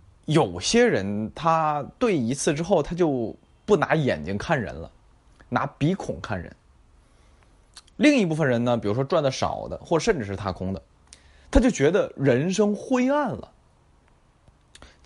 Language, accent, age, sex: Chinese, native, 20-39, male